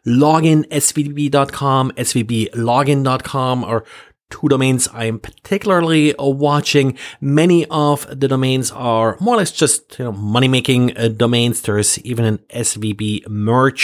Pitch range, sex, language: 115-145 Hz, male, English